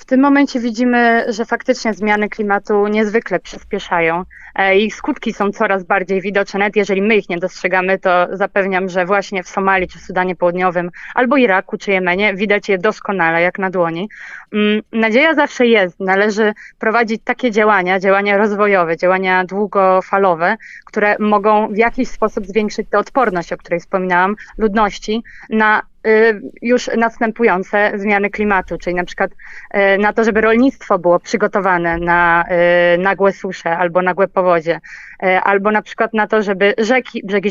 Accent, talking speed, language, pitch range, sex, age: native, 145 wpm, Polish, 190-220 Hz, female, 20-39